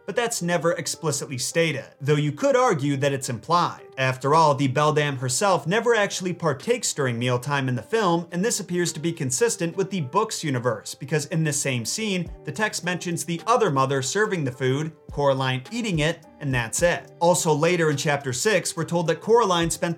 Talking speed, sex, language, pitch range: 195 wpm, male, English, 140-175 Hz